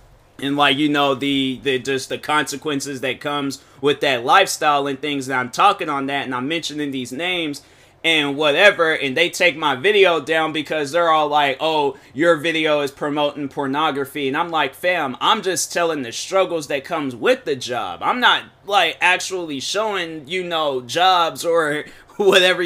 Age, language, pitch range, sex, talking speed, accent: 20-39, English, 140-190 Hz, male, 180 wpm, American